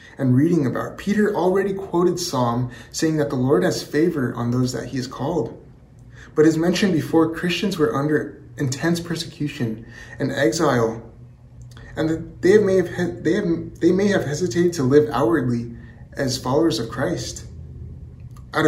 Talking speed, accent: 155 wpm, American